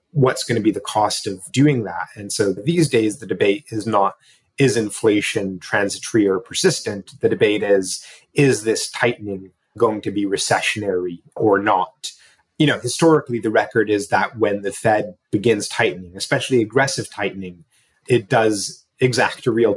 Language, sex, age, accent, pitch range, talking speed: English, male, 30-49, American, 95-120 Hz, 165 wpm